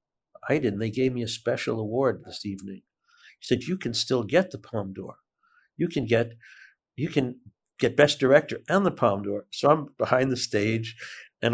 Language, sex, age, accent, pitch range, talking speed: English, male, 60-79, American, 110-130 Hz, 190 wpm